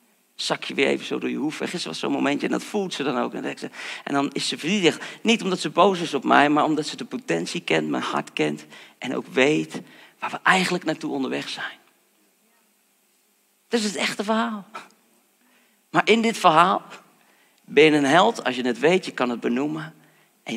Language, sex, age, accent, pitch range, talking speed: Dutch, male, 40-59, Dutch, 135-185 Hz, 205 wpm